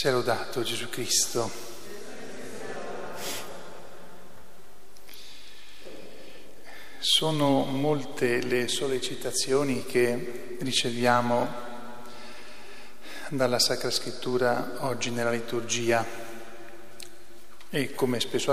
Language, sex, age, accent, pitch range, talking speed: Italian, male, 40-59, native, 120-155 Hz, 60 wpm